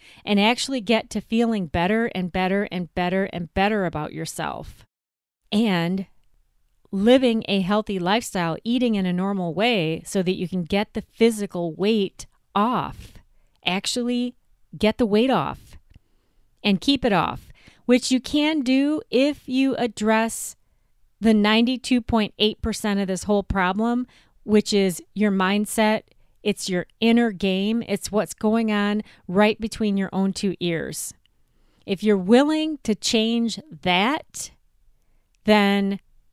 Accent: American